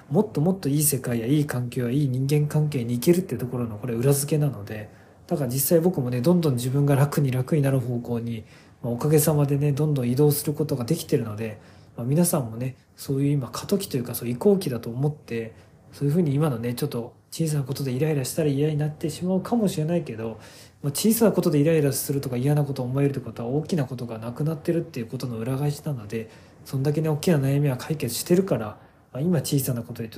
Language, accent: Japanese, native